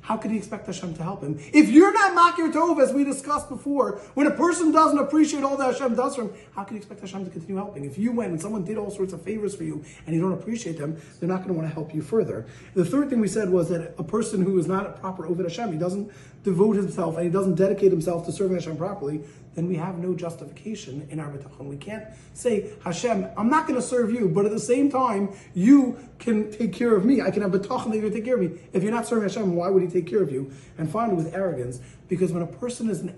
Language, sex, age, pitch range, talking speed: English, male, 30-49, 175-230 Hz, 280 wpm